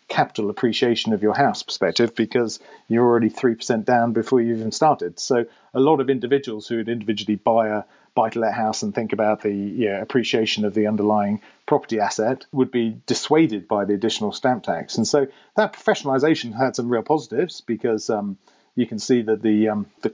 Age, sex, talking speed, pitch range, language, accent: 40-59, male, 195 wpm, 110-135 Hz, English, British